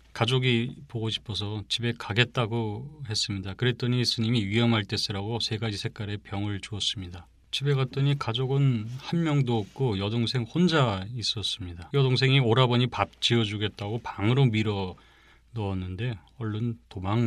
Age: 30-49